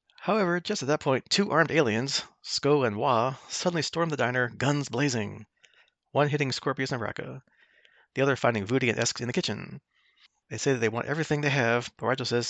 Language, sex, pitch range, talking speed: English, male, 115-145 Hz, 200 wpm